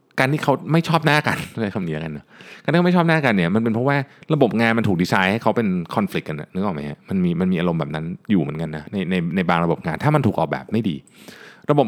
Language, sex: Thai, male